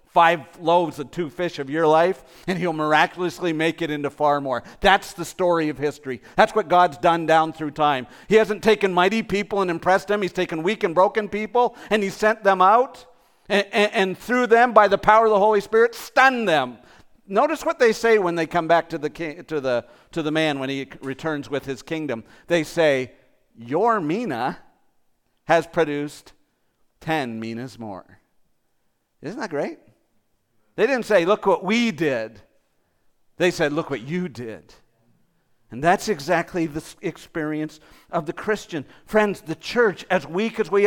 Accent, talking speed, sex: American, 175 wpm, male